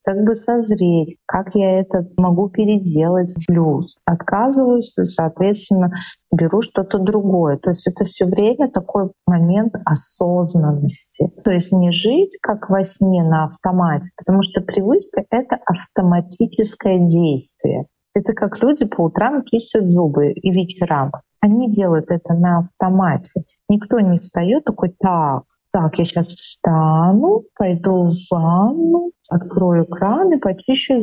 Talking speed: 130 wpm